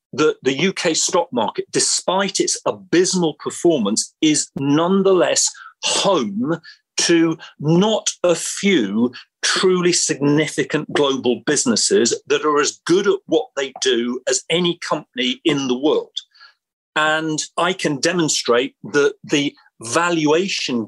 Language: English